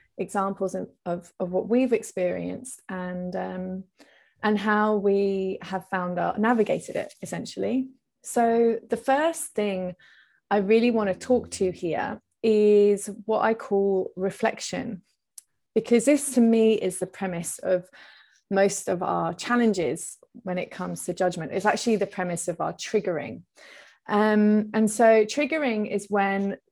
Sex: female